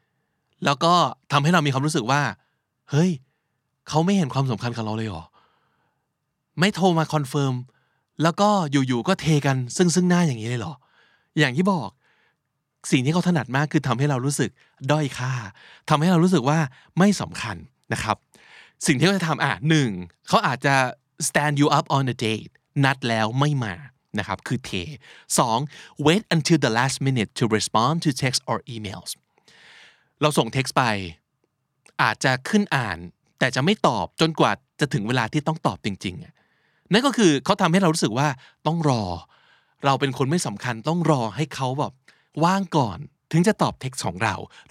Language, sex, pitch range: Thai, male, 125-160 Hz